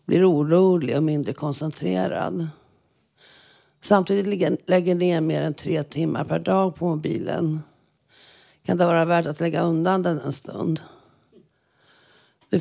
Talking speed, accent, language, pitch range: 135 wpm, native, Swedish, 155-190 Hz